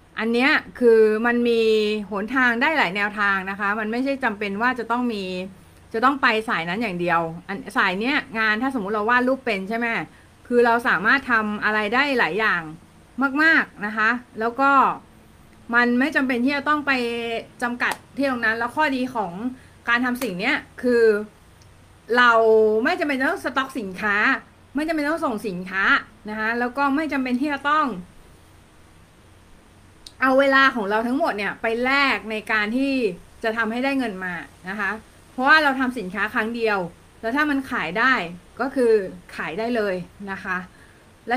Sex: female